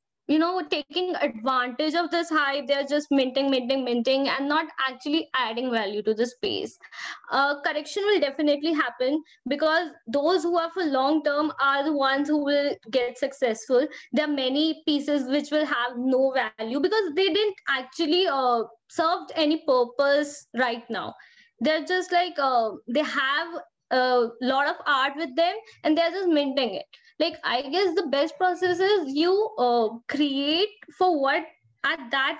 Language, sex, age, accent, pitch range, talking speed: English, female, 20-39, Indian, 270-345 Hz, 165 wpm